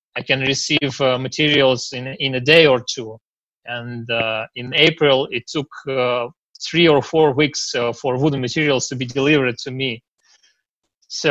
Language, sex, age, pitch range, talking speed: English, male, 20-39, 125-150 Hz, 170 wpm